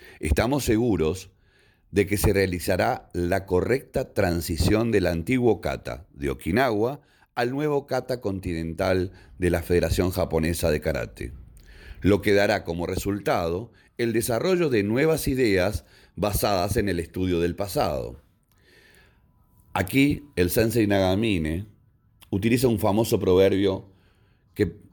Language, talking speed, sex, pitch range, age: Spanish, 120 wpm, male, 85-115 Hz, 40-59